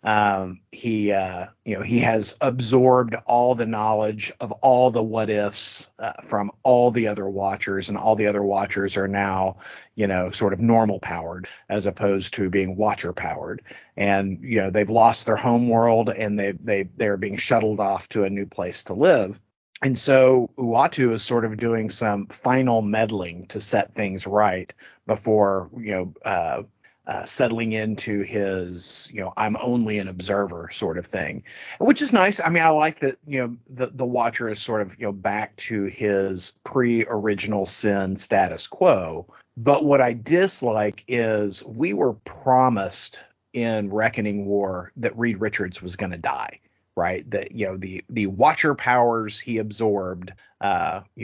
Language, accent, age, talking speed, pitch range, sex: English, American, 30-49, 175 wpm, 100-120 Hz, male